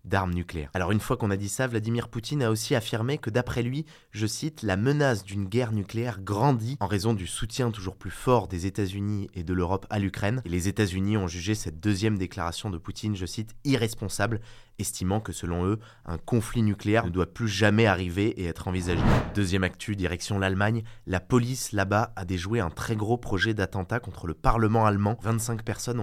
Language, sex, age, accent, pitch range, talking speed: French, male, 20-39, French, 95-115 Hz, 205 wpm